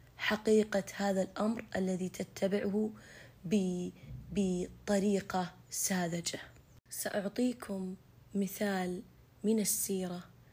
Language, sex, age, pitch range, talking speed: Arabic, female, 20-39, 180-210 Hz, 65 wpm